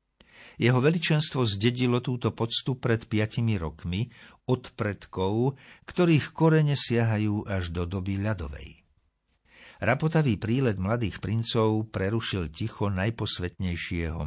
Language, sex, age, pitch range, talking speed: Slovak, male, 50-69, 95-120 Hz, 100 wpm